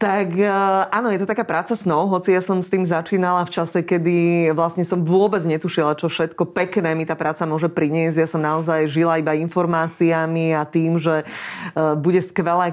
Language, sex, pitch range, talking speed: Slovak, female, 155-180 Hz, 185 wpm